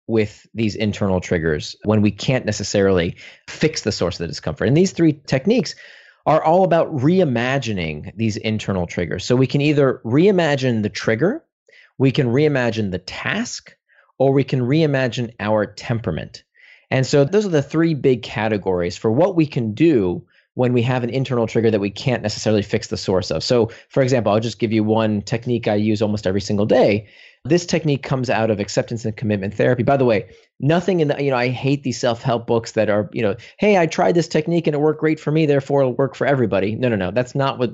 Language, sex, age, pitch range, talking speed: English, male, 30-49, 110-140 Hz, 210 wpm